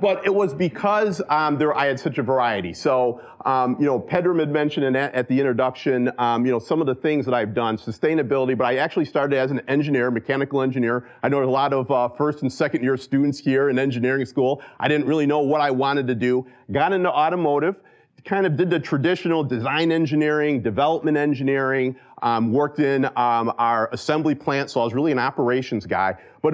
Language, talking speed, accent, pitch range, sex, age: English, 215 wpm, American, 125-155 Hz, male, 40-59